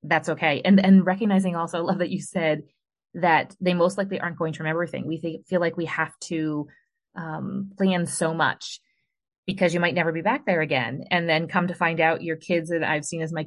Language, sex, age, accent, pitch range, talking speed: English, female, 30-49, American, 160-195 Hz, 230 wpm